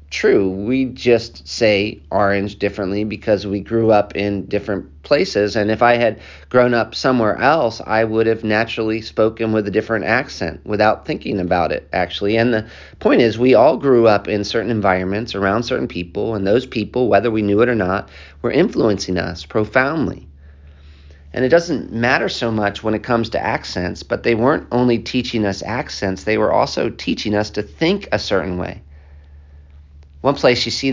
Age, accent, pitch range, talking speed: 40-59, American, 95-115 Hz, 180 wpm